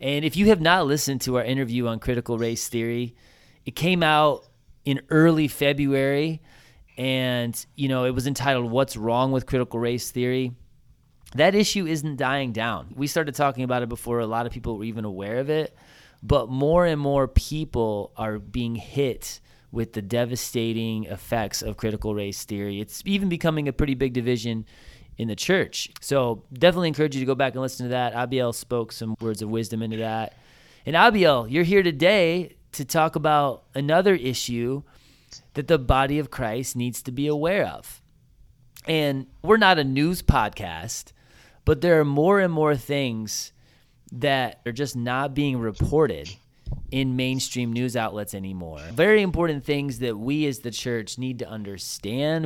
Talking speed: 175 wpm